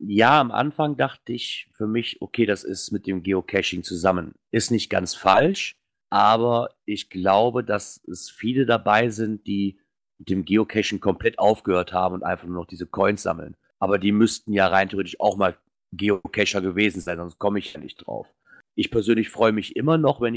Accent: German